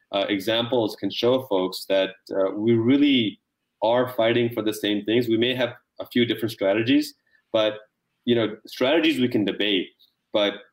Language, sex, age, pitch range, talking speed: English, male, 30-49, 95-110 Hz, 170 wpm